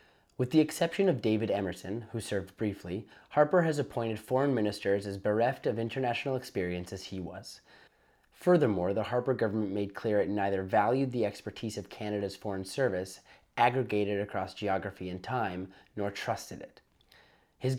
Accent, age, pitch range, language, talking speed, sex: American, 30-49, 95-125 Hz, English, 155 wpm, male